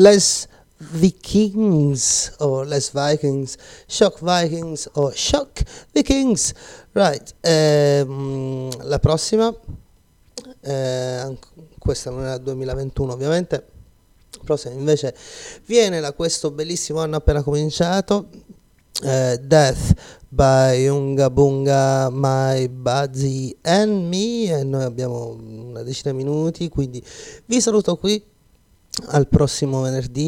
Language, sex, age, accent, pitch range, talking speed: Italian, male, 30-49, native, 130-165 Hz, 110 wpm